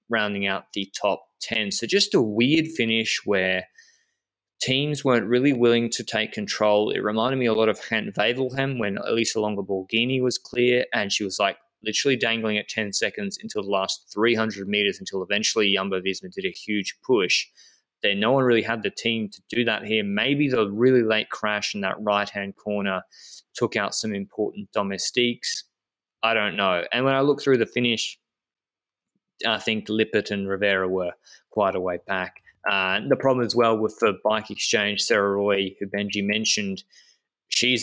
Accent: Australian